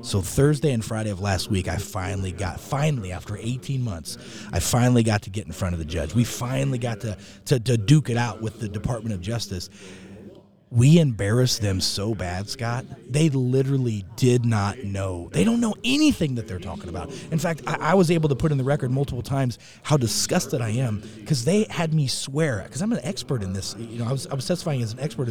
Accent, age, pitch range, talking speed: American, 30-49, 110-155 Hz, 225 wpm